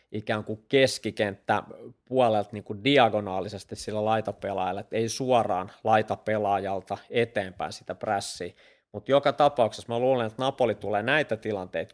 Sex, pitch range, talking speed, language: male, 100-120 Hz, 125 wpm, Finnish